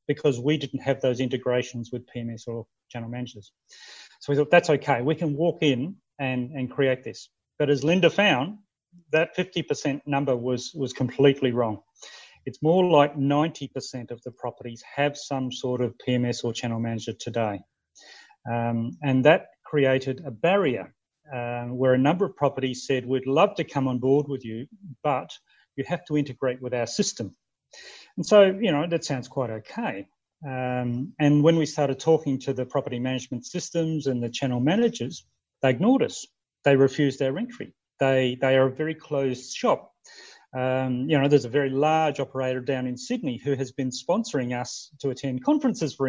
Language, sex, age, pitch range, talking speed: English, male, 40-59, 125-150 Hz, 180 wpm